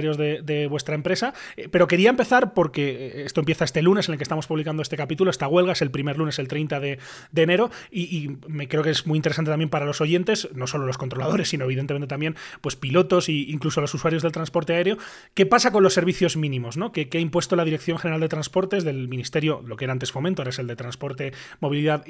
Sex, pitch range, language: male, 150-185 Hz, Spanish